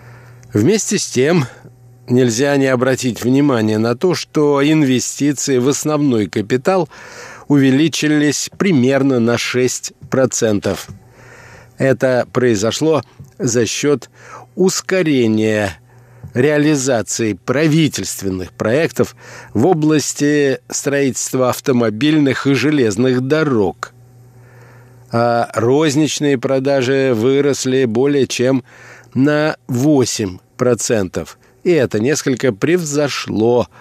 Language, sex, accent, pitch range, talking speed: Russian, male, native, 120-140 Hz, 80 wpm